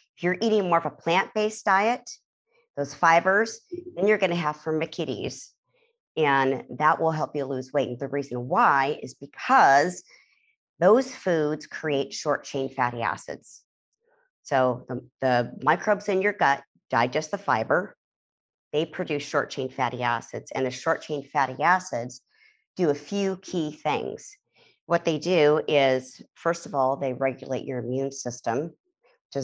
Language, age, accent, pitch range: English, 40-59, American, 125-180 Hz